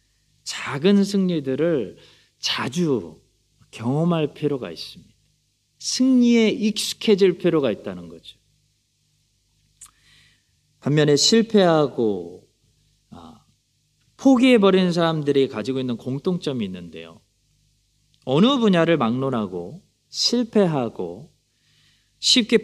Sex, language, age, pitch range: male, Korean, 40-59, 130-210 Hz